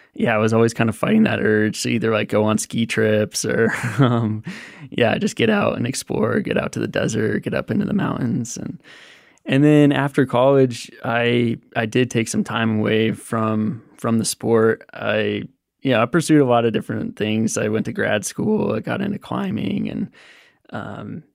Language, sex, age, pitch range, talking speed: English, male, 20-39, 110-130 Hz, 200 wpm